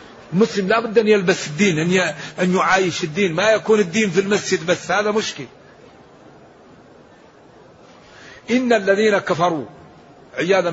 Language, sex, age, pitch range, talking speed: Arabic, male, 50-69, 170-200 Hz, 115 wpm